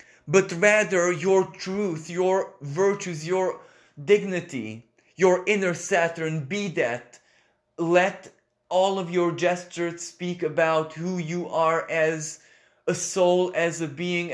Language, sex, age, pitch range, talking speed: English, male, 20-39, 165-180 Hz, 120 wpm